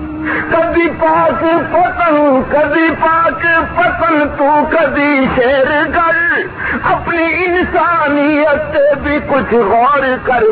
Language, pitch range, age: Urdu, 240-325 Hz, 50-69